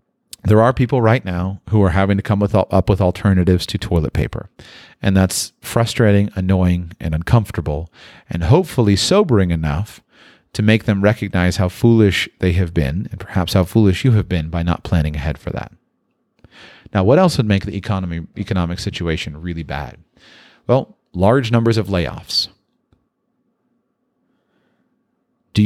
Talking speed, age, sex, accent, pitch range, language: 155 wpm, 40-59, male, American, 95-130 Hz, English